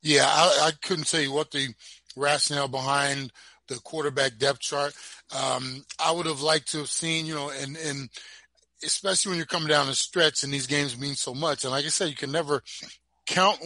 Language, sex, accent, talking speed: English, male, American, 205 wpm